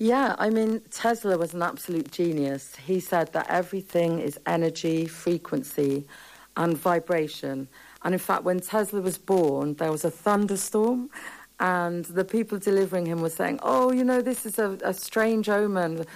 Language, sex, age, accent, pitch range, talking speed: English, female, 50-69, British, 160-185 Hz, 165 wpm